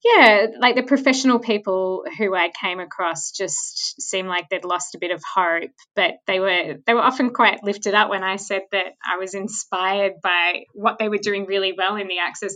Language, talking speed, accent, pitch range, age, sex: English, 210 wpm, Australian, 185-225 Hz, 20-39, female